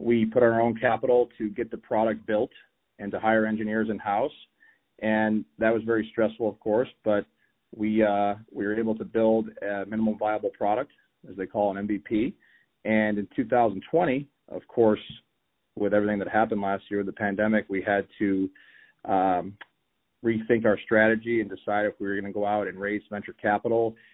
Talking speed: 180 wpm